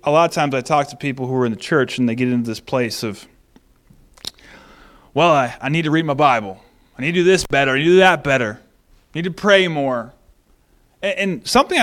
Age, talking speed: 30-49, 245 wpm